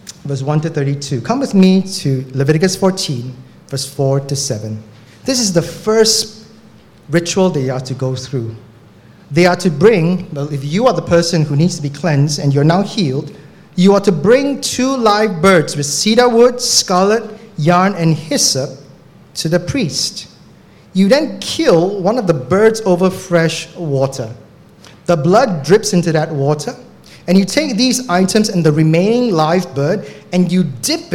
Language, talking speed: English, 170 wpm